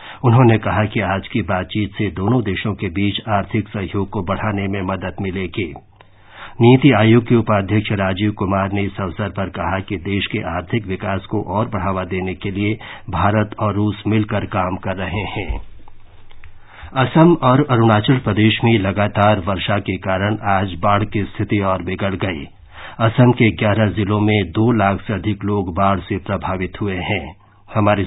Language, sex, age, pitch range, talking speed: Hindi, male, 50-69, 100-155 Hz, 170 wpm